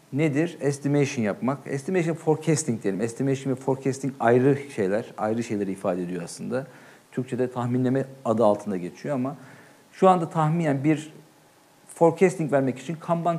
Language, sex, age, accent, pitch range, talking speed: Turkish, male, 50-69, native, 125-155 Hz, 135 wpm